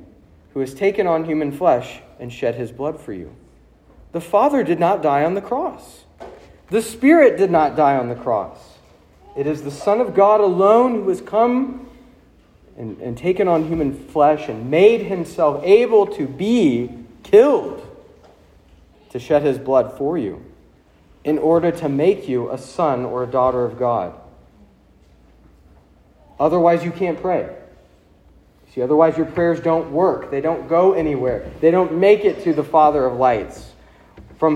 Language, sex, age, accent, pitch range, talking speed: English, male, 40-59, American, 130-205 Hz, 160 wpm